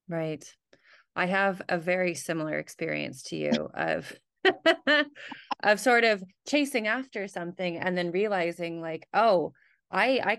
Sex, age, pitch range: female, 20-39, 165-210 Hz